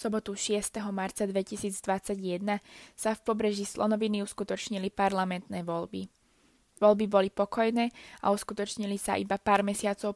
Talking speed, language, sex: 125 wpm, Slovak, female